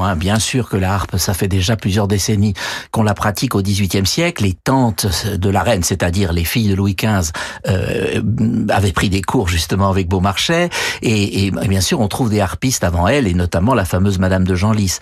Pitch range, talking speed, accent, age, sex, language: 100-125 Hz, 210 wpm, French, 60-79, male, French